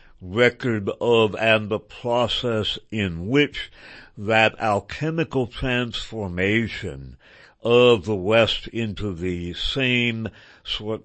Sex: male